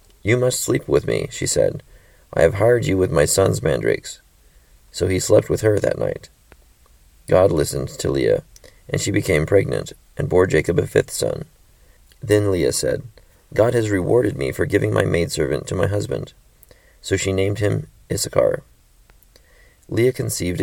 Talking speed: 165 wpm